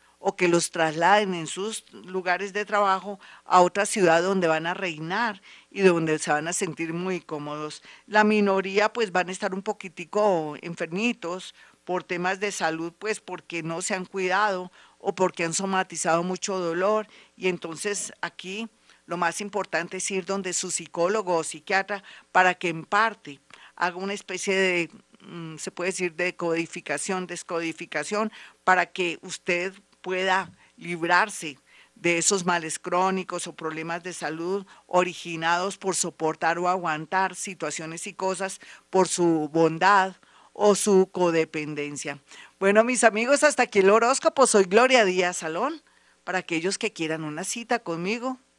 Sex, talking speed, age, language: female, 150 wpm, 50-69, Spanish